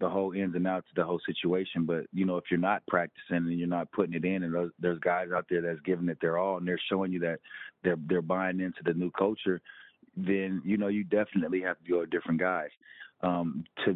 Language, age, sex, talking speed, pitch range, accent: English, 30-49, male, 245 wpm, 85-100 Hz, American